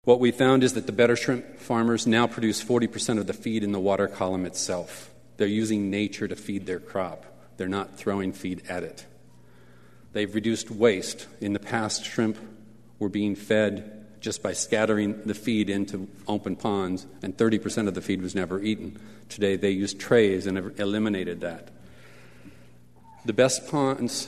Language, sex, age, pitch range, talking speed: English, male, 40-59, 95-110 Hz, 175 wpm